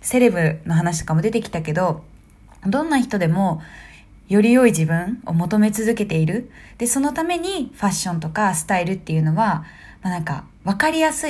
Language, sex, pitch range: Japanese, female, 165-235 Hz